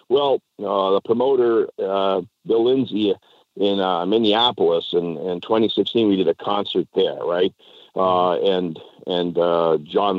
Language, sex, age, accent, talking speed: English, male, 50-69, American, 145 wpm